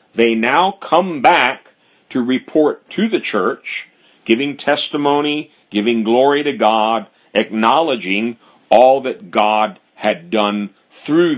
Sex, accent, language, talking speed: male, American, English, 115 wpm